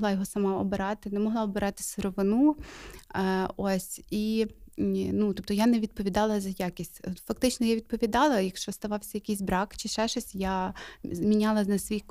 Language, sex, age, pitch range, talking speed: Ukrainian, female, 20-39, 195-230 Hz, 150 wpm